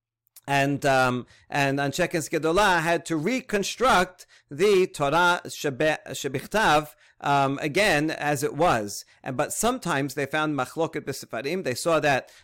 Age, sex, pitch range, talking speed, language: 40-59, male, 140-175 Hz, 130 wpm, English